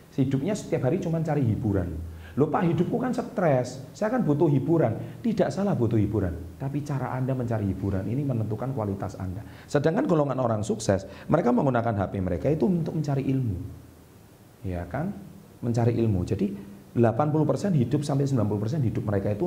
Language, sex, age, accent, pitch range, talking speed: Indonesian, male, 40-59, native, 100-130 Hz, 160 wpm